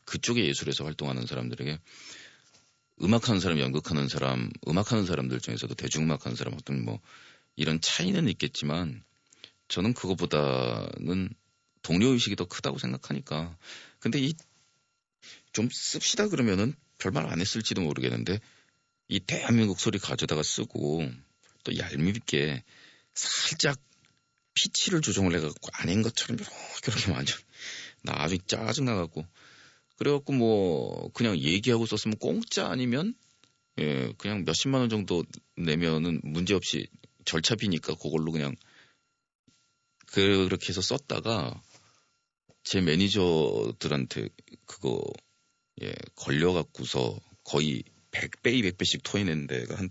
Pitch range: 75-110 Hz